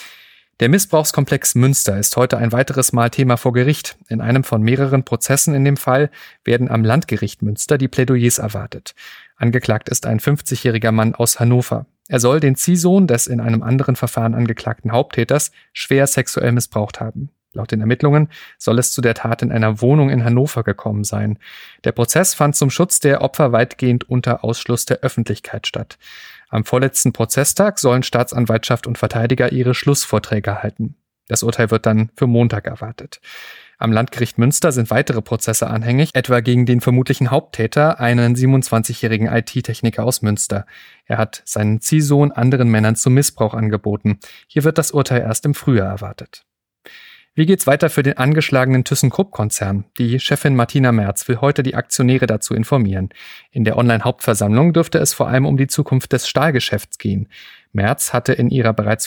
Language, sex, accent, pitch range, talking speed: German, male, German, 115-135 Hz, 165 wpm